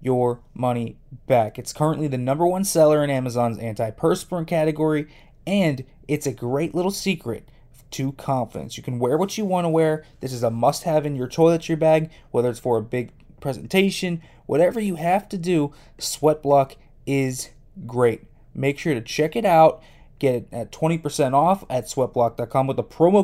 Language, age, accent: English, 20-39, American